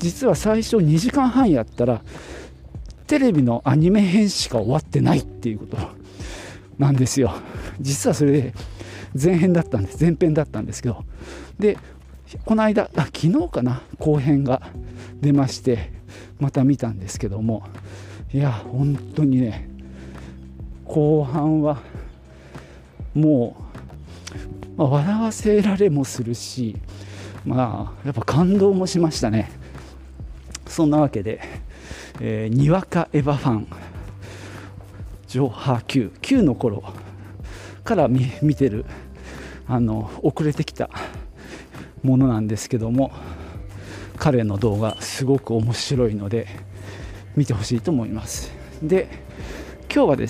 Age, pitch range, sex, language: 40-59, 95-145 Hz, male, Japanese